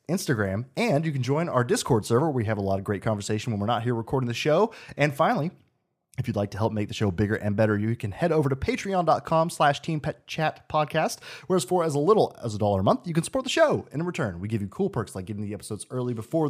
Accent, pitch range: American, 115-165 Hz